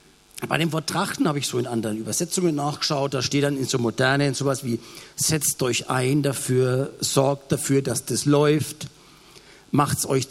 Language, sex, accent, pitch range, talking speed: German, male, German, 125-175 Hz, 175 wpm